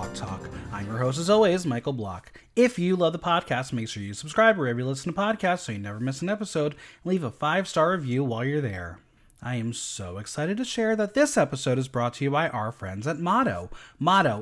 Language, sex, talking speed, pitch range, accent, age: English, male, 230 wpm, 125-200 Hz, American, 30-49